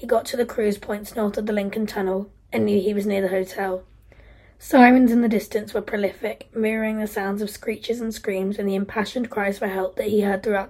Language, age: English, 20-39